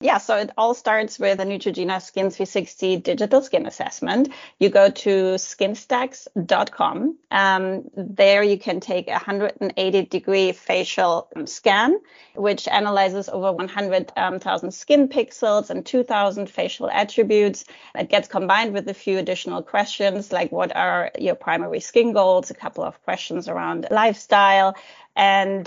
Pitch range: 195-235 Hz